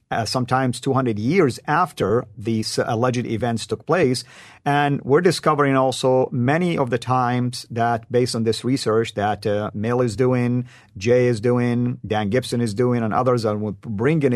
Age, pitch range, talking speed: 50-69, 115-140 Hz, 170 wpm